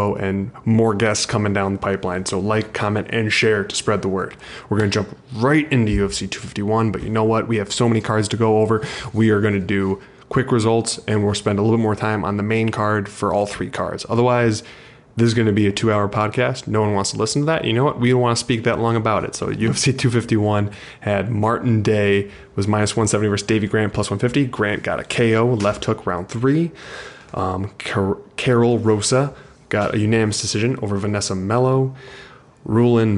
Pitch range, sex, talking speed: 105-115 Hz, male, 220 wpm